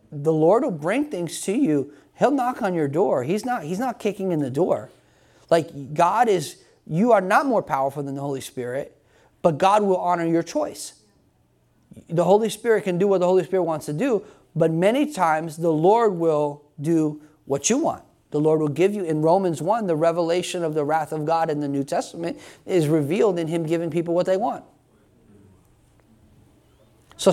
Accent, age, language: American, 30-49, English